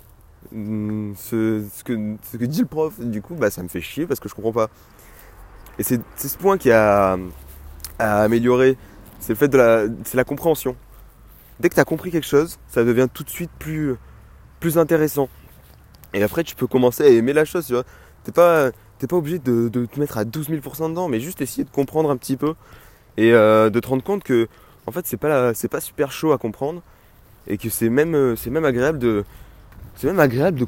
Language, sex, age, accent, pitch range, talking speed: English, male, 20-39, French, 110-145 Hz, 220 wpm